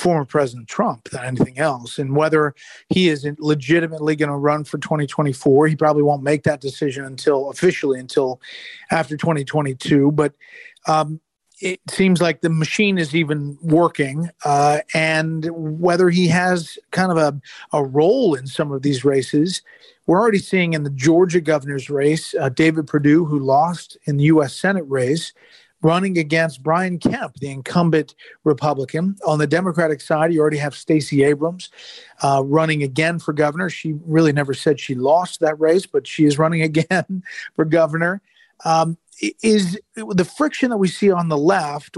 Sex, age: male, 40-59